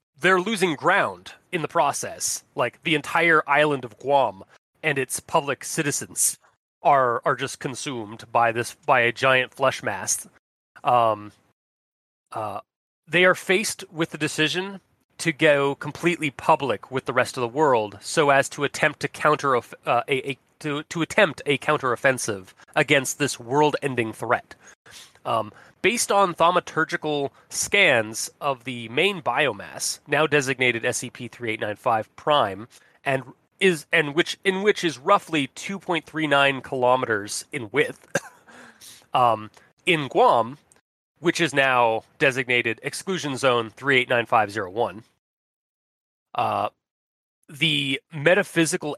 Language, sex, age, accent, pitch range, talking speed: English, male, 30-49, American, 130-165 Hz, 140 wpm